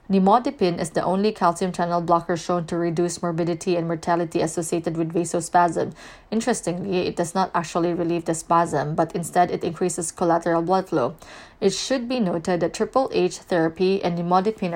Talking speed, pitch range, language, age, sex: 165 wpm, 170-195 Hz, English, 20-39, female